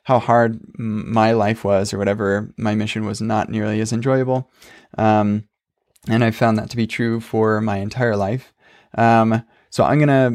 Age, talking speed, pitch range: 20-39, 170 wpm, 105-115 Hz